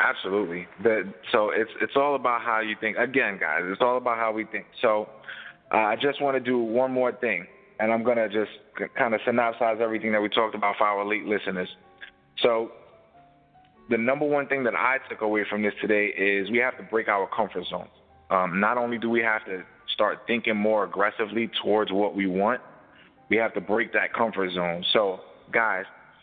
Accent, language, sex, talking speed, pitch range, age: American, English, male, 205 wpm, 105-130 Hz, 20-39